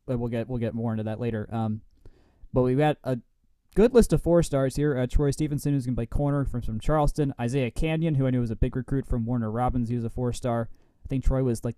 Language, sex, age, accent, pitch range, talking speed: English, male, 20-39, American, 115-140 Hz, 265 wpm